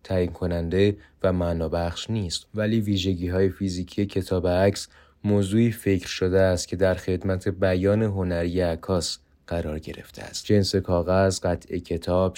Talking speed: 130 wpm